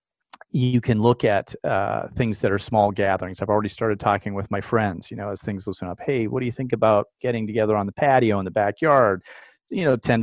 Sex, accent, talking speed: male, American, 235 wpm